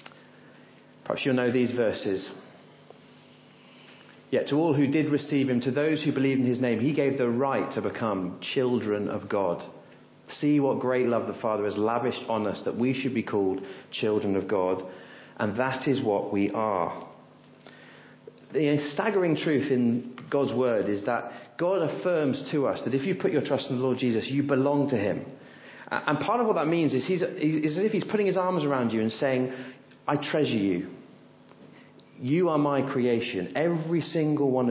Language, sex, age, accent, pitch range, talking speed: English, male, 40-59, British, 115-145 Hz, 180 wpm